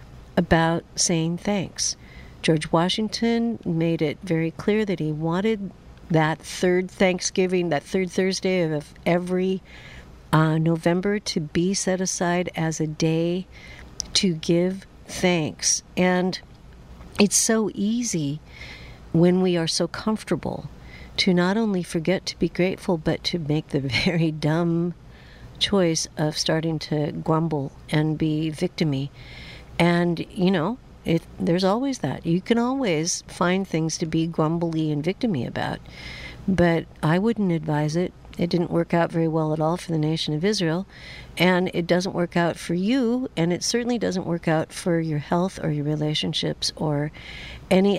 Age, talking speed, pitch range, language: 60-79, 150 wpm, 155-185 Hz, English